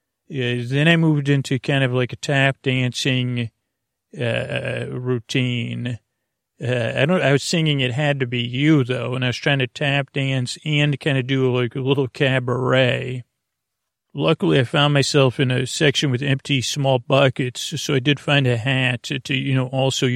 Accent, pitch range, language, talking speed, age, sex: American, 125-145 Hz, English, 190 wpm, 40-59, male